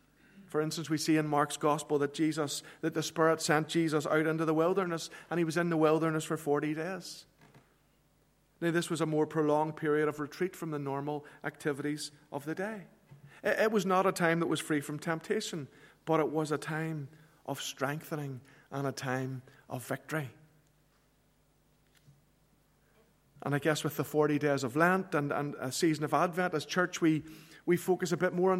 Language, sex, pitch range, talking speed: English, male, 150-175 Hz, 190 wpm